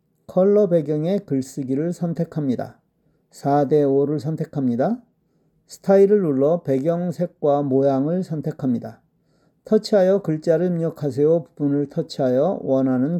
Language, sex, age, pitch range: Korean, male, 40-59, 145-180 Hz